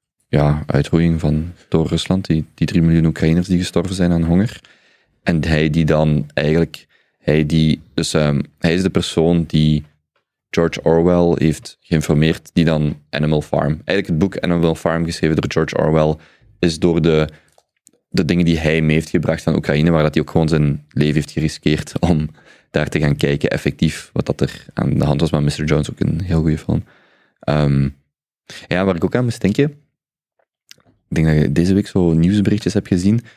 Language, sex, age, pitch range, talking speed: Dutch, male, 20-39, 75-85 Hz, 190 wpm